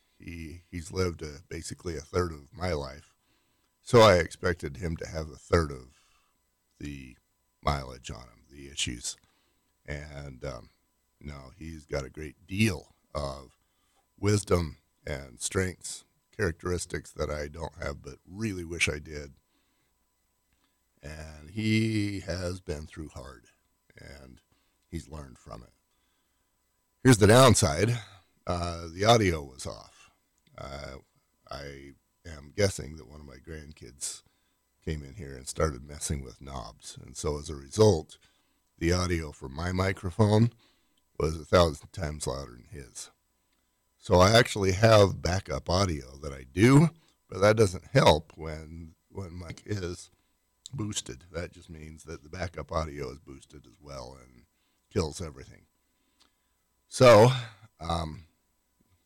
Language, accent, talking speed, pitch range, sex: English, American, 135 wpm, 70-95 Hz, male